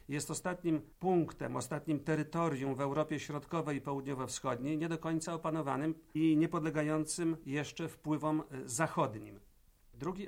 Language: Polish